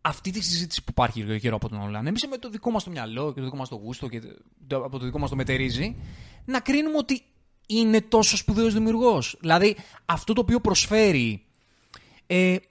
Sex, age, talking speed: male, 20-39, 200 wpm